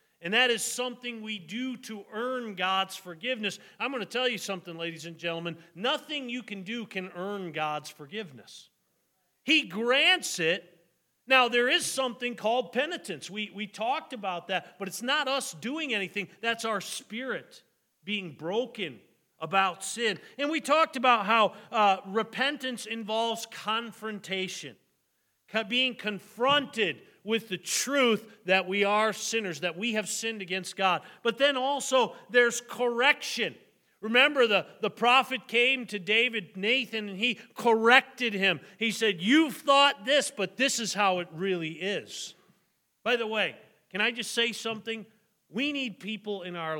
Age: 40-59